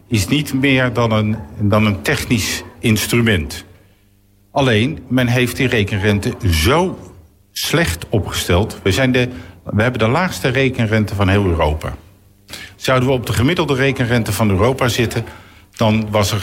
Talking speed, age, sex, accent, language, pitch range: 135 wpm, 50-69, male, Dutch, Dutch, 95-120 Hz